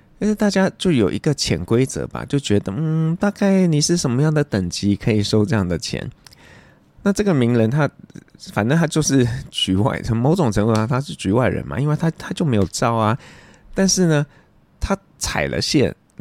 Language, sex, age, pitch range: Chinese, male, 20-39, 95-140 Hz